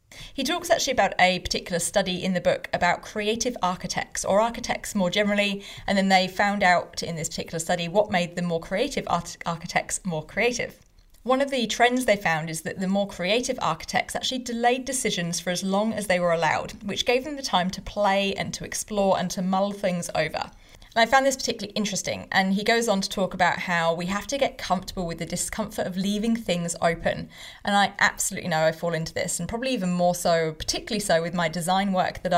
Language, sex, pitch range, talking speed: English, female, 175-210 Hz, 215 wpm